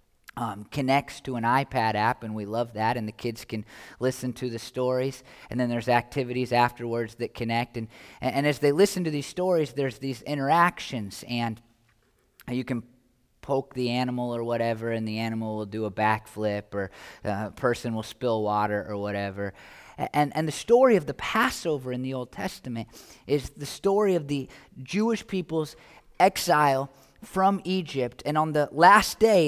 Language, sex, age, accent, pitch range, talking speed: English, male, 20-39, American, 120-170 Hz, 175 wpm